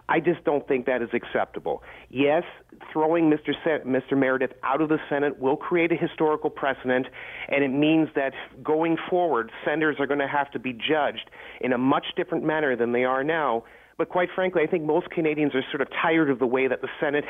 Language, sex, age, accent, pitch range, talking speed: English, male, 40-59, American, 130-155 Hz, 215 wpm